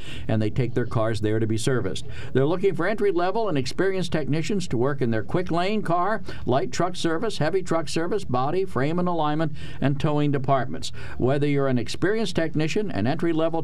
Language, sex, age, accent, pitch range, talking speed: English, male, 50-69, American, 130-160 Hz, 190 wpm